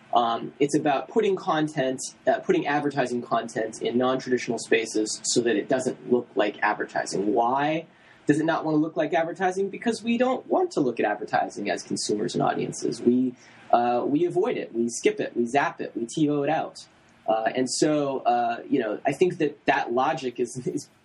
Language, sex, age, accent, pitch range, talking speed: English, male, 20-39, American, 120-165 Hz, 195 wpm